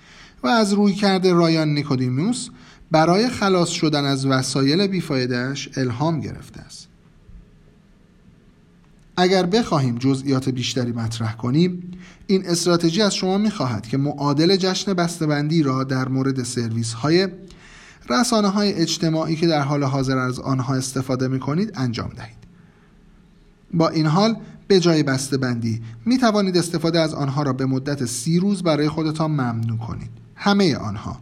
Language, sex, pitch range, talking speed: Persian, male, 130-180 Hz, 135 wpm